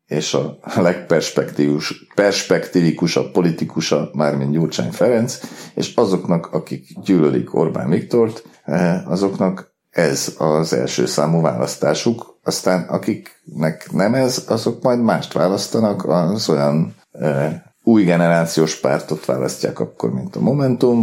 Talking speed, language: 110 wpm, Hungarian